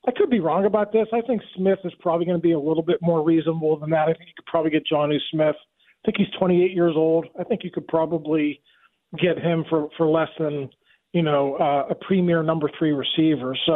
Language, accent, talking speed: English, American, 240 wpm